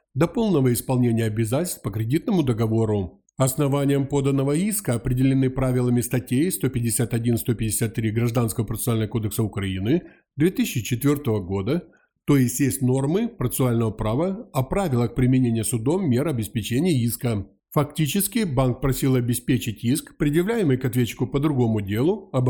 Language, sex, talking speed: Ukrainian, male, 120 wpm